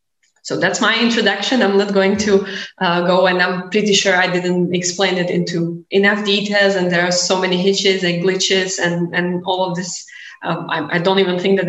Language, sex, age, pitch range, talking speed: Slovak, female, 20-39, 170-200 Hz, 210 wpm